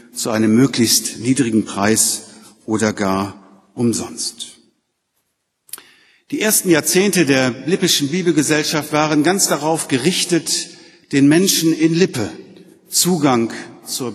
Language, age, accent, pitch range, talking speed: German, 50-69, German, 120-165 Hz, 100 wpm